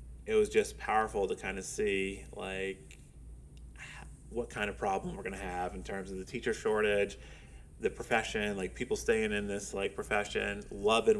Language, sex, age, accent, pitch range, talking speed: English, male, 30-49, American, 90-100 Hz, 175 wpm